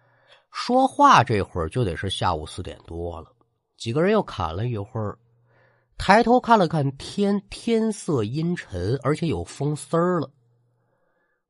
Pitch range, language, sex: 105-175 Hz, Chinese, male